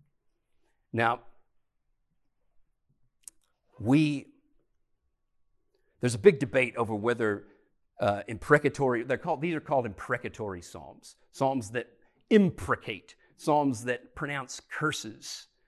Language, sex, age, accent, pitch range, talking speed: English, male, 50-69, American, 115-150 Hz, 90 wpm